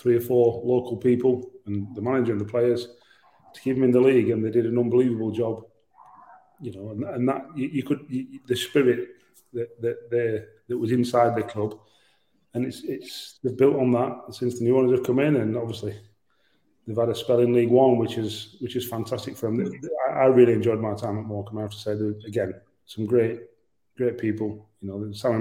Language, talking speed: English, 215 wpm